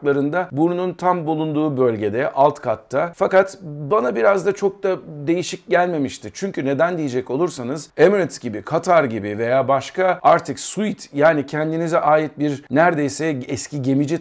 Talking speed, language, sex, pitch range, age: 140 wpm, Turkish, male, 125-155 Hz, 50-69